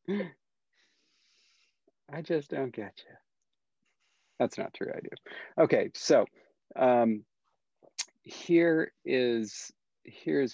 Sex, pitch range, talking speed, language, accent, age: male, 110-180 Hz, 90 wpm, English, American, 40-59